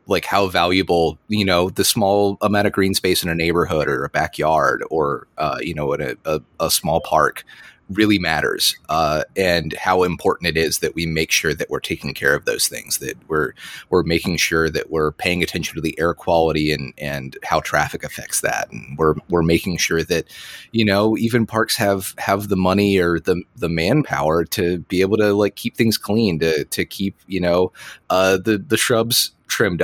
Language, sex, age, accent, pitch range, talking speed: English, male, 30-49, American, 80-100 Hz, 205 wpm